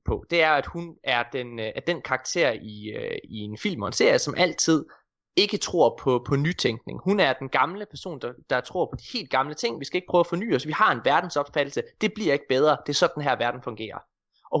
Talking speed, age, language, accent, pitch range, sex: 240 wpm, 20-39, Danish, native, 130-180 Hz, male